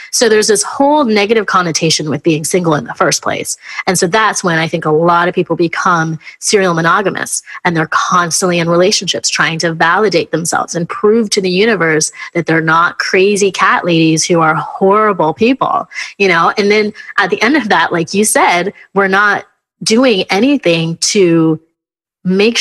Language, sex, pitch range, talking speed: English, female, 170-215 Hz, 180 wpm